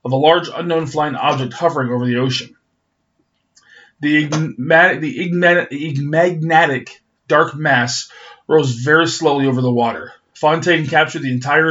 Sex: male